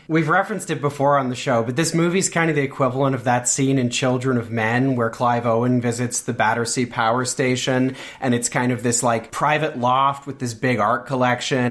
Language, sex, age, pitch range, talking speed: English, male, 30-49, 125-145 Hz, 215 wpm